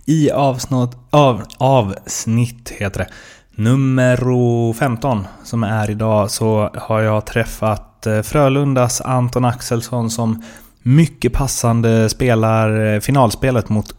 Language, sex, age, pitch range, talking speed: Swedish, male, 20-39, 105-125 Hz, 100 wpm